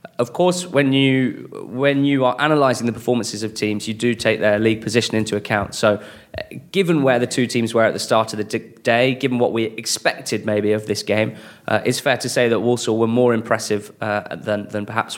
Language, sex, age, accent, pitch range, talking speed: English, male, 20-39, British, 105-125 Hz, 220 wpm